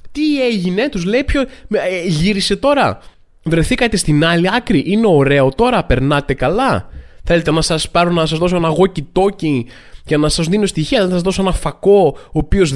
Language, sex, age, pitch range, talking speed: Greek, male, 20-39, 140-195 Hz, 180 wpm